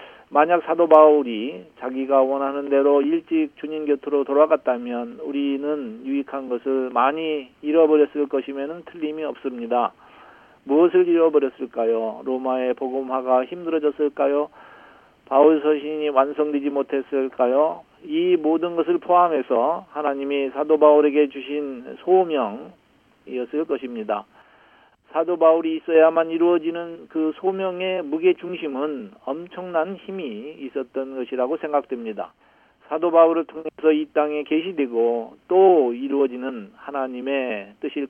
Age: 50-69